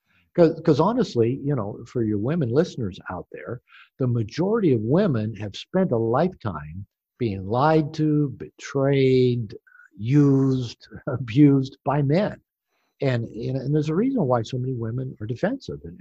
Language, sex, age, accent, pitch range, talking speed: English, male, 60-79, American, 120-160 Hz, 140 wpm